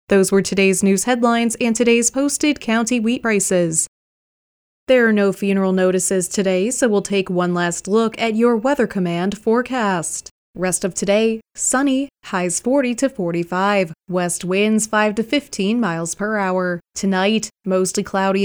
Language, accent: English, American